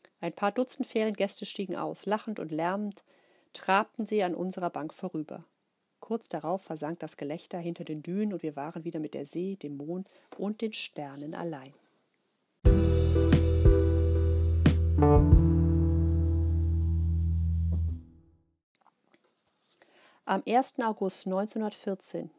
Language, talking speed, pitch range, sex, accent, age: German, 105 wpm, 155-195 Hz, female, German, 50-69